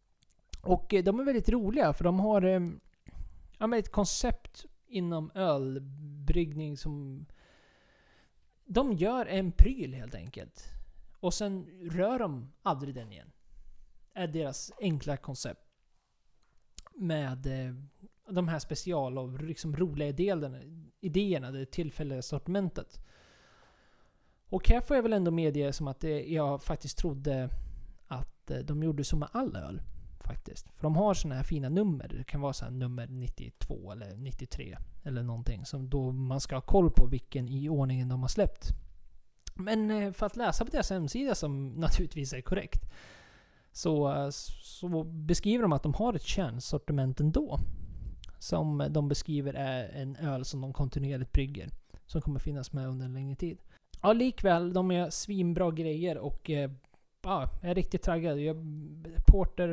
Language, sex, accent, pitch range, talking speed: Swedish, male, native, 135-180 Hz, 145 wpm